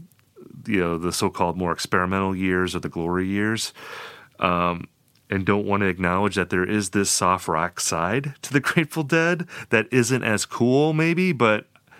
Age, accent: 30-49, American